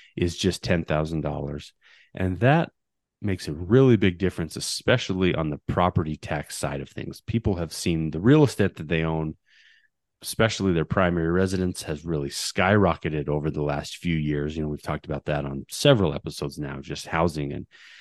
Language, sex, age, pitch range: English, male, 30-49, 75-100 Hz